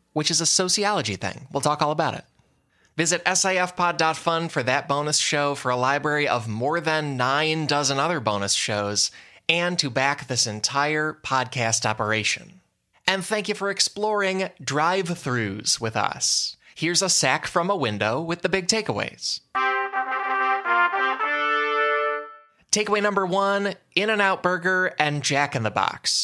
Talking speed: 140 wpm